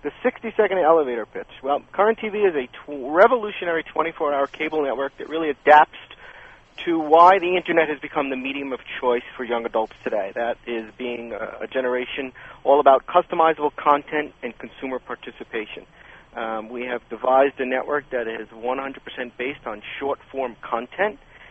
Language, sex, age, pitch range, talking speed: English, male, 40-59, 125-165 Hz, 155 wpm